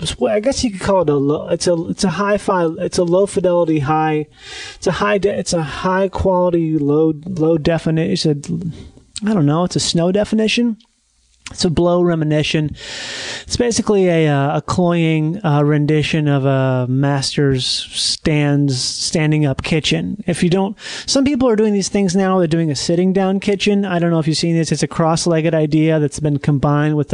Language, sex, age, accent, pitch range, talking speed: English, male, 30-49, American, 150-185 Hz, 190 wpm